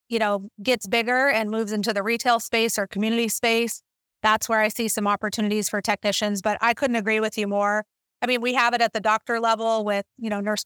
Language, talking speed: English, 230 wpm